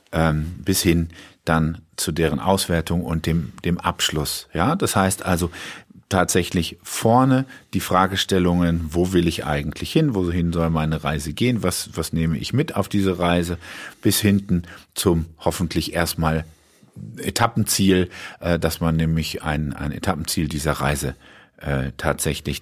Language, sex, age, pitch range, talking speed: German, male, 50-69, 85-105 Hz, 135 wpm